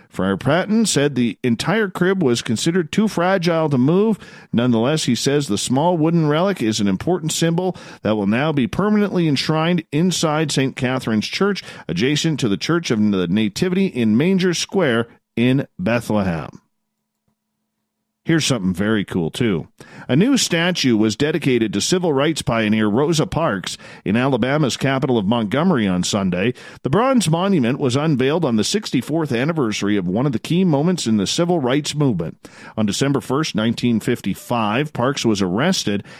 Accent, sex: American, male